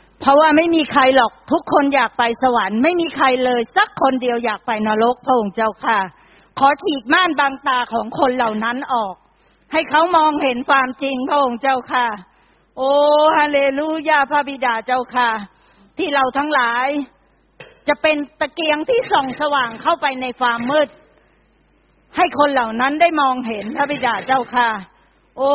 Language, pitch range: Thai, 230-285 Hz